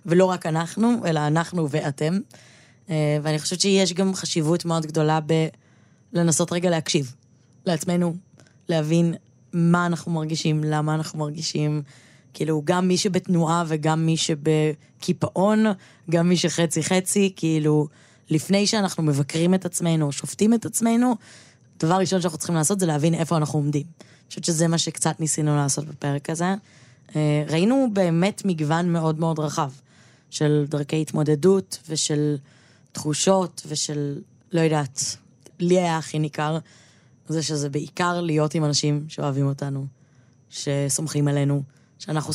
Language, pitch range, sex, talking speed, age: Hebrew, 145-170 Hz, female, 130 wpm, 20-39